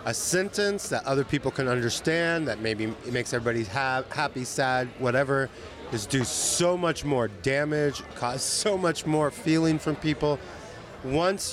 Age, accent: 30-49, American